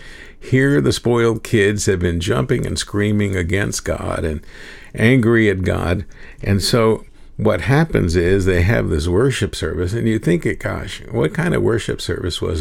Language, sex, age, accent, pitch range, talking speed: English, male, 50-69, American, 90-115 Hz, 170 wpm